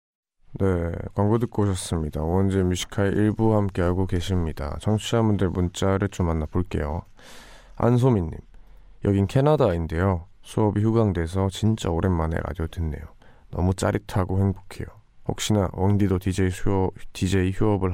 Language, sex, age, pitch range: Korean, male, 20-39, 85-105 Hz